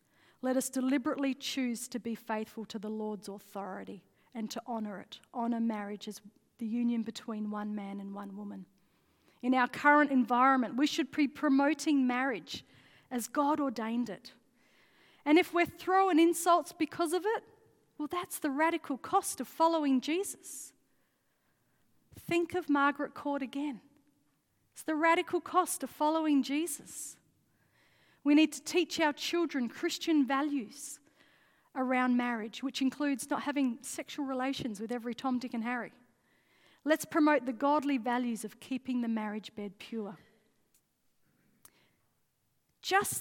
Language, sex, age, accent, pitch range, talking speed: English, female, 40-59, Australian, 235-300 Hz, 140 wpm